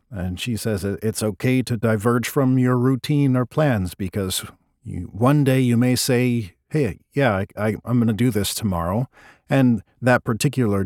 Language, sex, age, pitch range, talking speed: English, male, 50-69, 95-130 Hz, 160 wpm